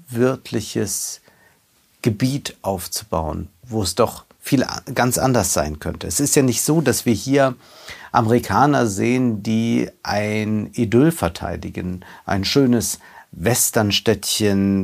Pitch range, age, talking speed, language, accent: 100-120 Hz, 50-69, 115 wpm, German, German